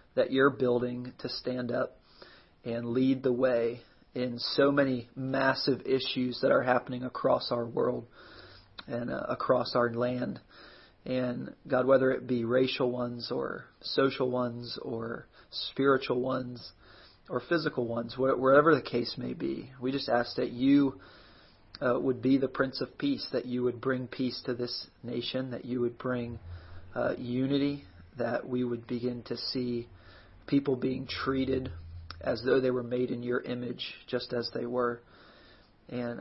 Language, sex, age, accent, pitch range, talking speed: English, male, 40-59, American, 120-130 Hz, 155 wpm